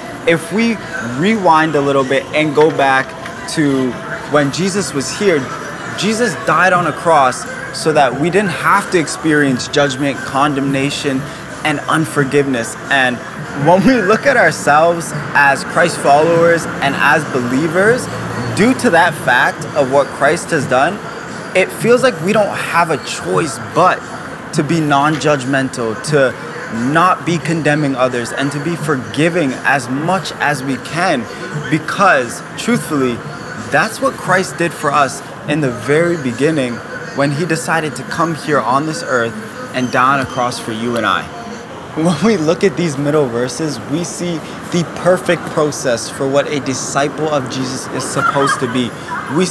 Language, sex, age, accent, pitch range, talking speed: English, male, 20-39, American, 135-170 Hz, 160 wpm